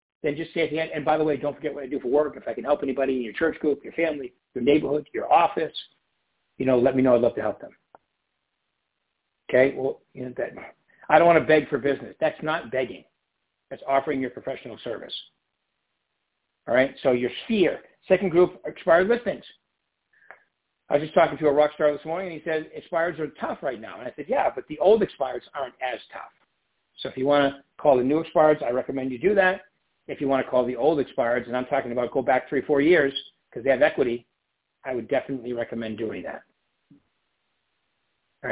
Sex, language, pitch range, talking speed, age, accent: male, English, 130-160 Hz, 215 wpm, 60-79, American